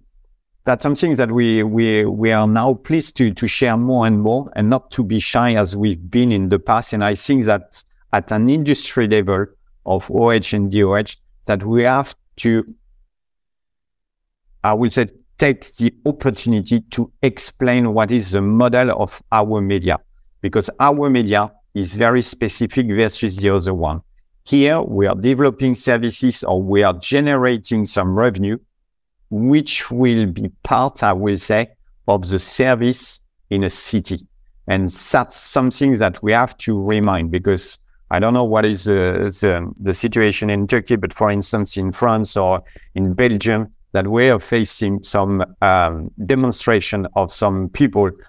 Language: Turkish